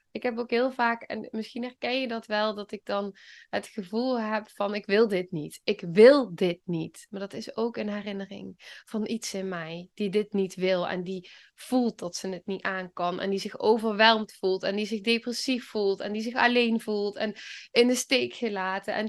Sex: female